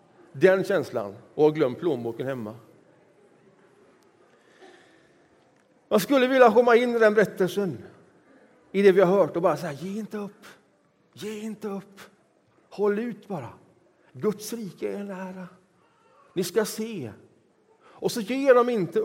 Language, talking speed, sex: Swedish, 135 wpm, male